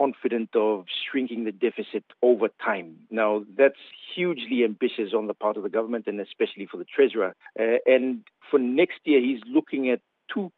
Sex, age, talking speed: male, 50-69, 175 wpm